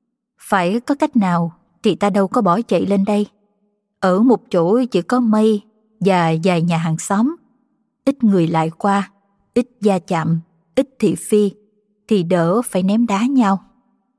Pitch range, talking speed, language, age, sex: 180-240 Hz, 165 wpm, Vietnamese, 20-39, female